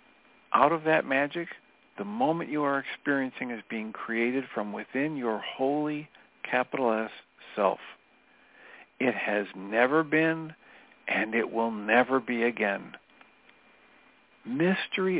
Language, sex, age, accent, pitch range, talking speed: English, male, 50-69, American, 115-150 Hz, 120 wpm